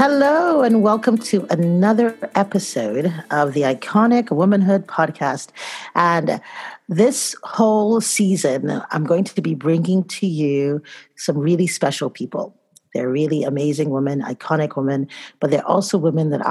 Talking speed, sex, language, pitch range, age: 135 wpm, female, English, 155-205 Hz, 40-59